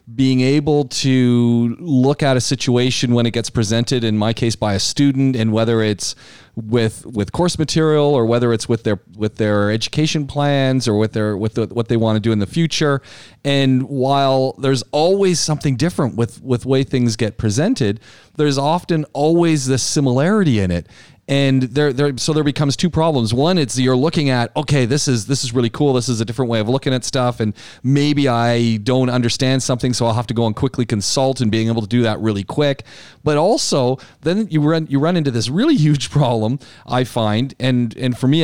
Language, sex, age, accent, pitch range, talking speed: English, male, 40-59, American, 110-140 Hz, 210 wpm